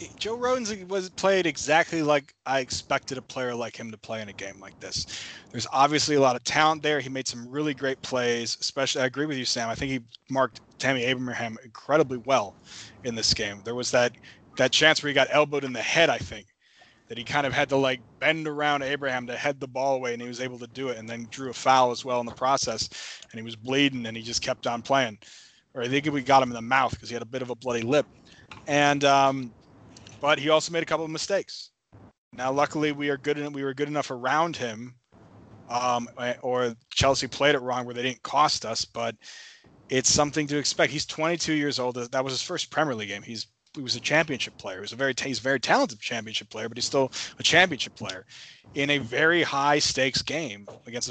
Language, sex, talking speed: English, male, 235 wpm